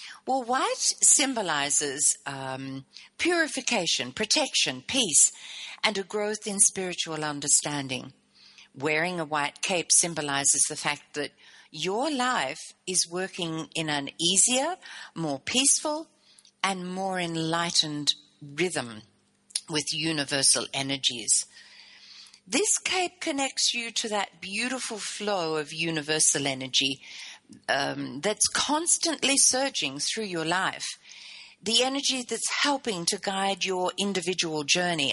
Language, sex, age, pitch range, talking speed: English, female, 50-69, 150-240 Hz, 110 wpm